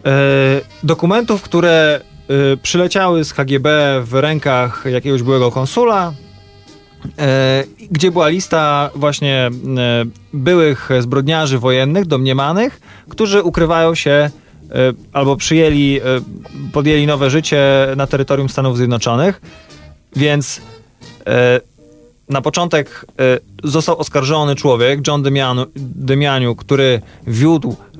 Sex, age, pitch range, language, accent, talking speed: male, 20-39, 125-155 Hz, Polish, native, 100 wpm